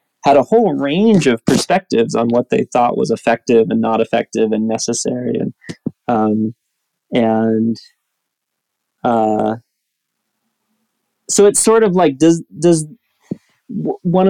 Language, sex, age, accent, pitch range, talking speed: English, male, 30-49, American, 120-160 Hz, 120 wpm